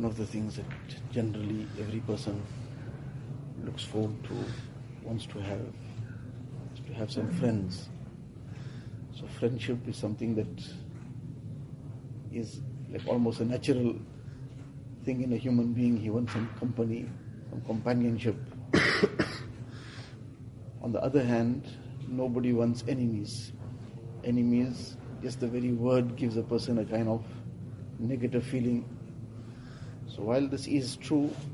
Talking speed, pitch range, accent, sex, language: 125 wpm, 120-135 Hz, Indian, male, English